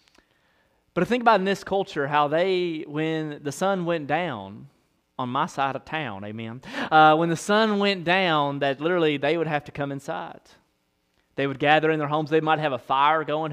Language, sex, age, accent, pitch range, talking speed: English, male, 30-49, American, 140-175 Hz, 200 wpm